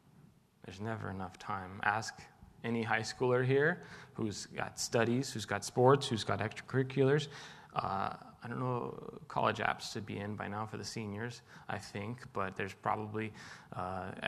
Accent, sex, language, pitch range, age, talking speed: American, male, English, 110-130 Hz, 20-39, 160 wpm